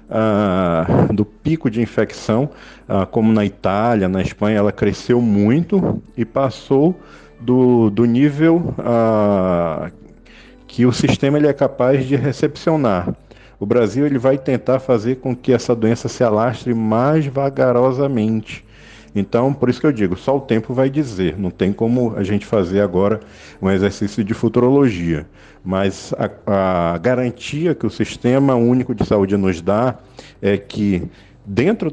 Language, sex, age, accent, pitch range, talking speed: Portuguese, male, 50-69, Brazilian, 100-130 Hz, 145 wpm